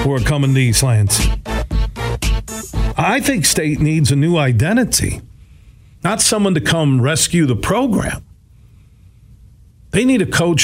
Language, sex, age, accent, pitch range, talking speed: English, male, 50-69, American, 125-185 Hz, 130 wpm